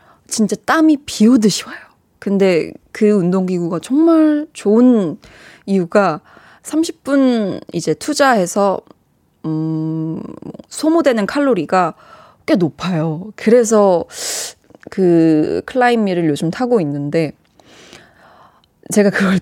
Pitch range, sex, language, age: 180-255 Hz, female, Korean, 20-39